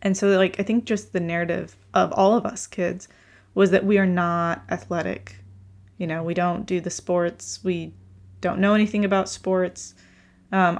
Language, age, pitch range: English, 20-39, 165-195 Hz